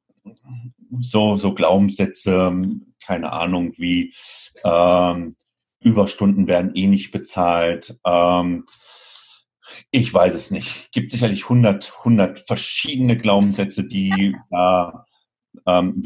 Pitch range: 95-120 Hz